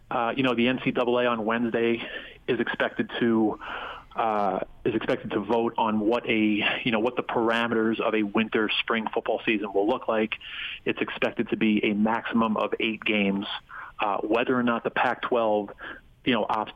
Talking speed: 180 wpm